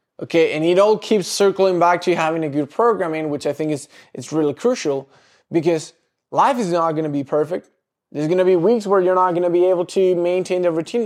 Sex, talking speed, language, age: male, 235 wpm, English, 20-39